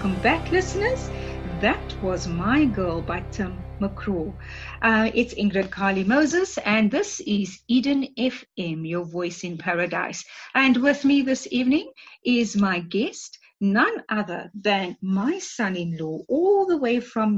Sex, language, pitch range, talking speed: female, English, 185-255 Hz, 140 wpm